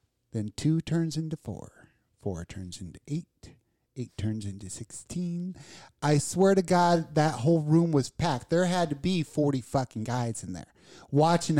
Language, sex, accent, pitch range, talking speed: English, male, American, 125-175 Hz, 165 wpm